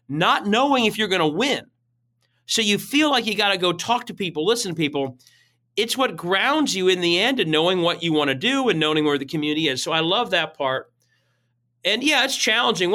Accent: American